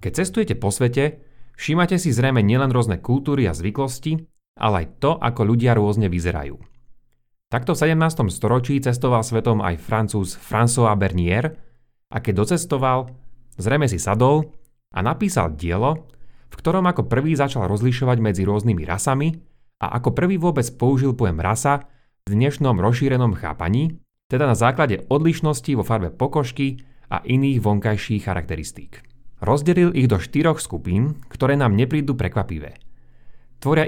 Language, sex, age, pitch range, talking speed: Slovak, male, 30-49, 105-140 Hz, 140 wpm